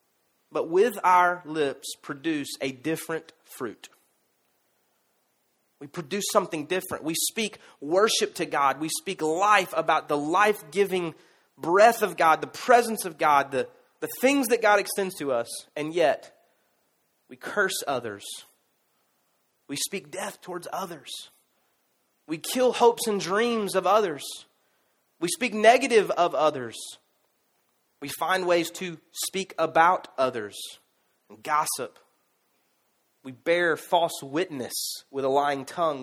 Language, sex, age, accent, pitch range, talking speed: English, male, 30-49, American, 150-205 Hz, 130 wpm